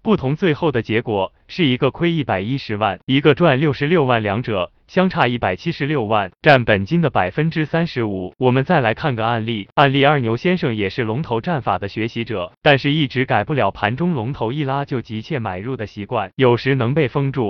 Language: Chinese